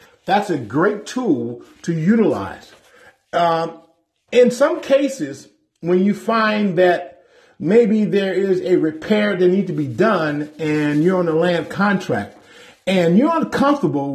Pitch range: 165-240 Hz